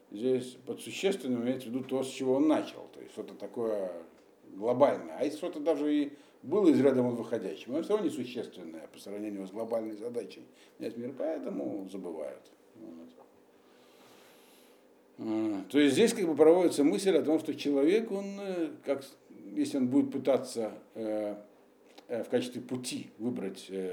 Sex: male